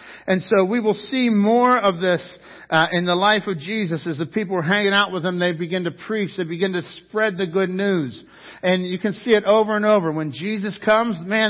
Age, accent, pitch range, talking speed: 60-79, American, 145-180 Hz, 235 wpm